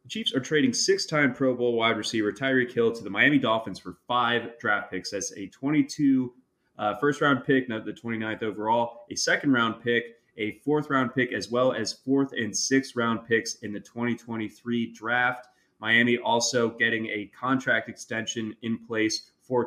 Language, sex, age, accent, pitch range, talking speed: English, male, 20-39, American, 115-140 Hz, 170 wpm